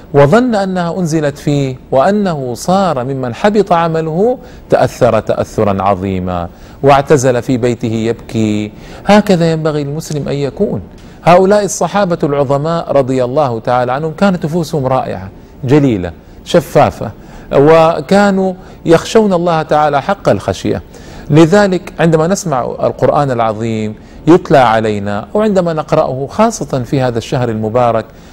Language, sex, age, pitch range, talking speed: Arabic, male, 40-59, 115-170 Hz, 110 wpm